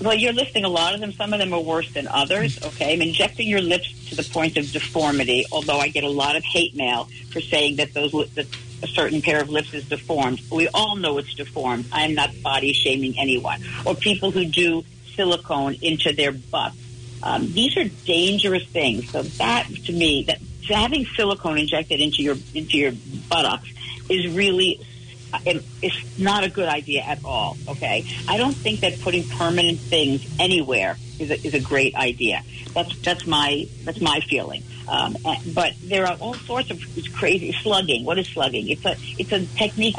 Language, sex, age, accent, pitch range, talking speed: English, female, 50-69, American, 135-175 Hz, 195 wpm